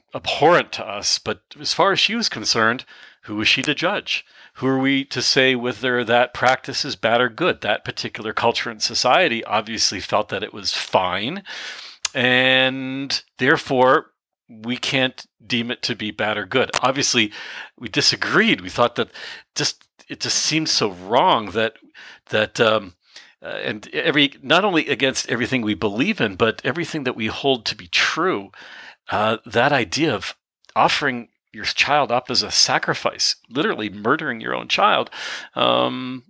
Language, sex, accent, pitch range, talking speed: English, male, American, 110-135 Hz, 165 wpm